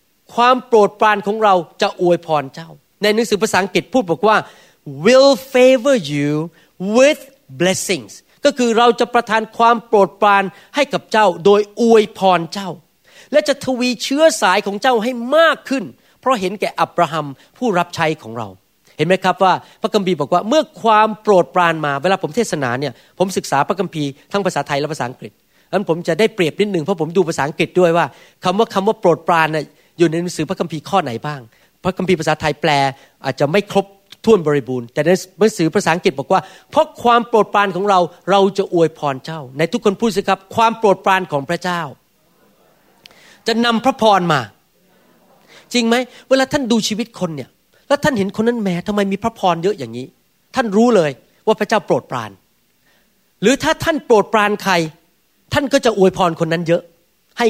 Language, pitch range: Thai, 165-225 Hz